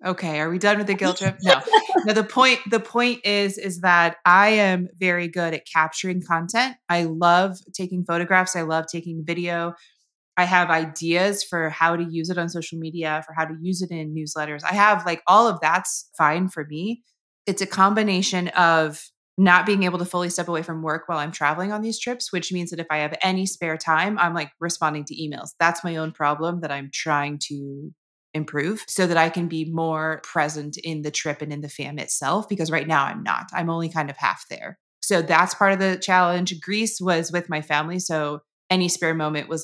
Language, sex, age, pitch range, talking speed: English, female, 30-49, 160-185 Hz, 215 wpm